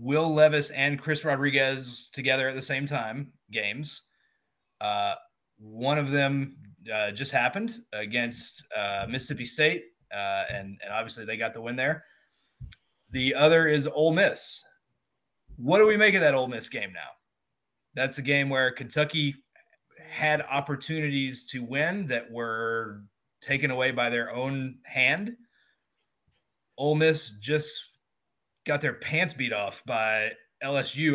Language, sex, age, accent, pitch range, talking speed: English, male, 30-49, American, 120-150 Hz, 140 wpm